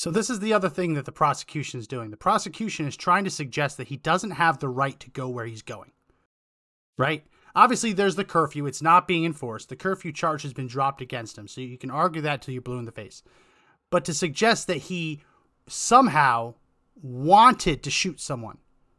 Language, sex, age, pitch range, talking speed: English, male, 30-49, 135-180 Hz, 210 wpm